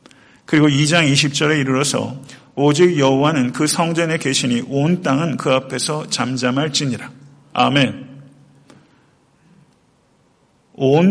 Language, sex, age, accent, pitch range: Korean, male, 50-69, native, 130-150 Hz